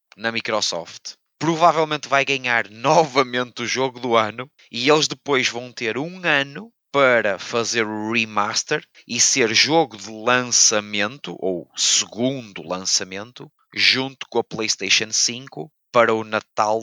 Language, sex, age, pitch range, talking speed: Portuguese, male, 20-39, 110-130 Hz, 130 wpm